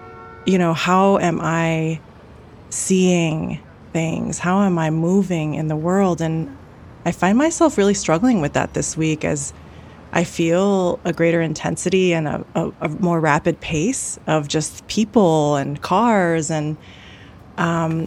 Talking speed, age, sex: 145 wpm, 20-39, female